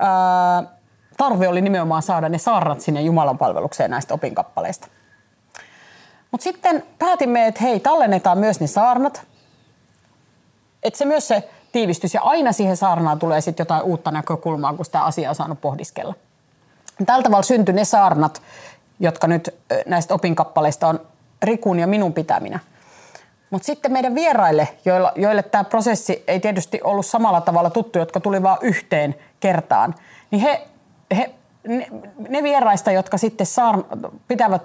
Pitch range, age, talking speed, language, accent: 165-235 Hz, 30-49, 140 wpm, Finnish, native